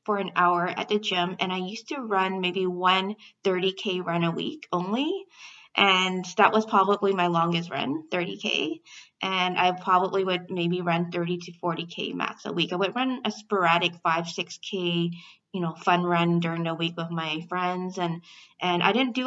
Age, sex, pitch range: 20-39, female, 175-205 Hz